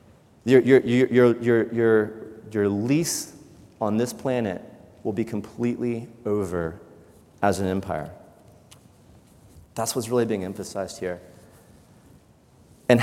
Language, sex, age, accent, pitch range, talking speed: English, male, 30-49, American, 110-145 Hz, 110 wpm